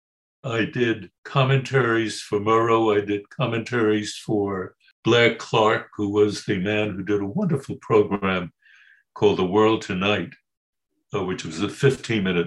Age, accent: 60-79, American